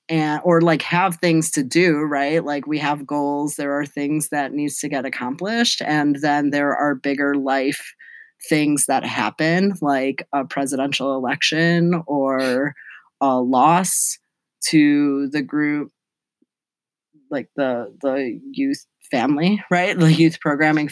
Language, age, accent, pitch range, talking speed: English, 30-49, American, 135-165 Hz, 140 wpm